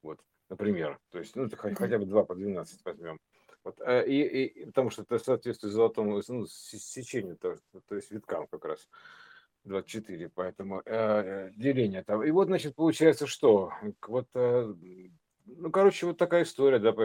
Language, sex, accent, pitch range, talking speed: Russian, male, native, 100-130 Hz, 160 wpm